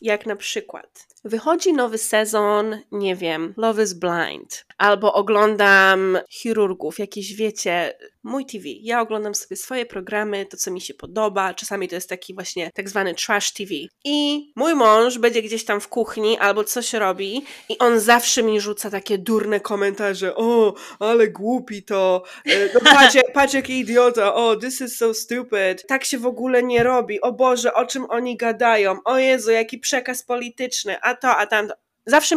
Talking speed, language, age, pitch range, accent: 170 wpm, Polish, 20-39, 205-255 Hz, native